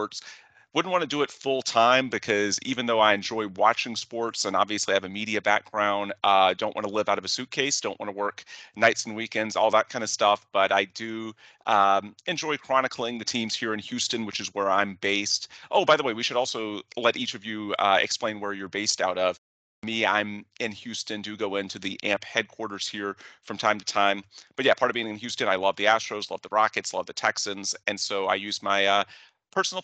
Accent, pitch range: American, 100-115 Hz